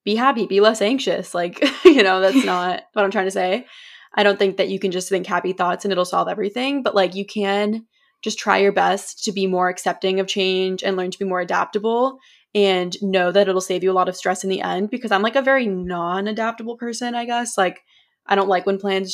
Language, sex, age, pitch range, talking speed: English, female, 20-39, 185-215 Hz, 245 wpm